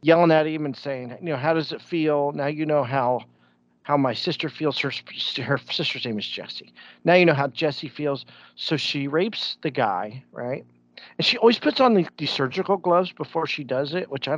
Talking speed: 215 wpm